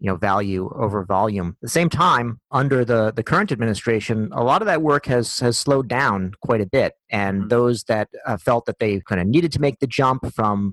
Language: English